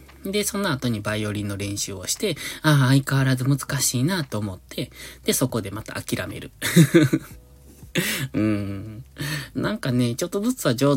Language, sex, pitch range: Japanese, male, 105-145 Hz